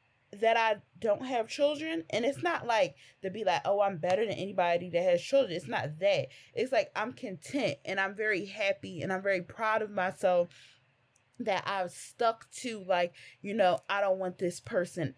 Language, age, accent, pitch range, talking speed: English, 20-39, American, 165-220 Hz, 195 wpm